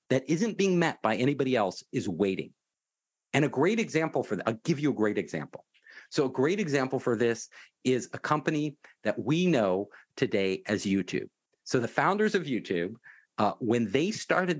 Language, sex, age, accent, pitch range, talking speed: English, male, 50-69, American, 115-185 Hz, 185 wpm